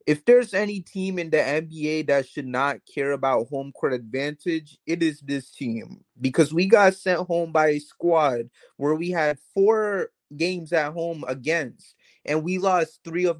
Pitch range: 140-170 Hz